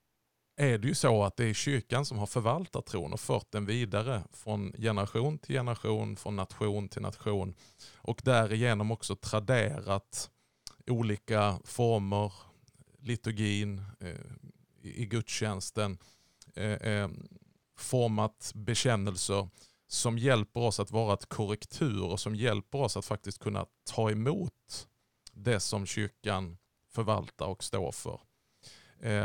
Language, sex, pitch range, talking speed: Swedish, male, 105-125 Hz, 120 wpm